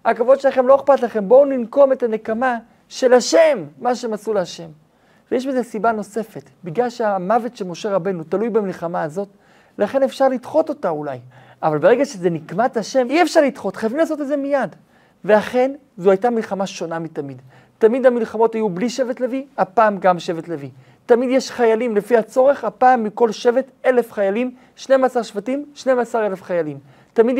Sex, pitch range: male, 185-245 Hz